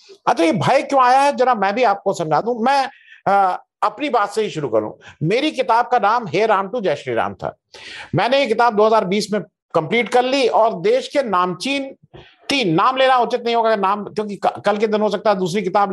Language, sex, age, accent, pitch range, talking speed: Hindi, male, 50-69, native, 190-245 Hz, 220 wpm